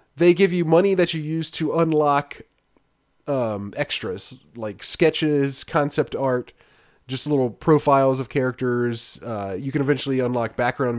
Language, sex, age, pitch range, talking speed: English, male, 30-49, 125-170 Hz, 140 wpm